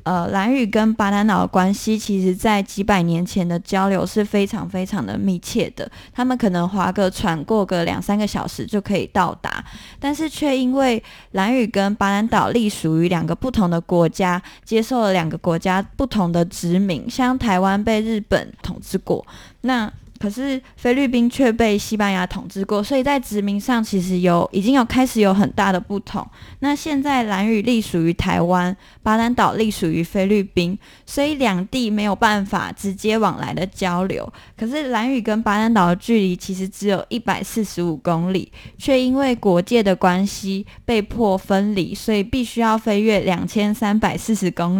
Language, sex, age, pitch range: Chinese, female, 20-39, 185-230 Hz